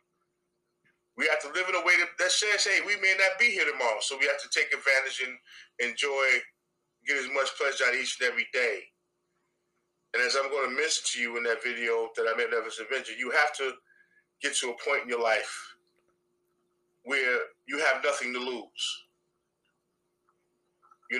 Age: 30-49